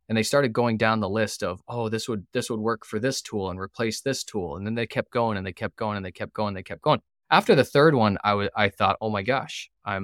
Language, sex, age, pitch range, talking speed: English, male, 20-39, 105-130 Hz, 300 wpm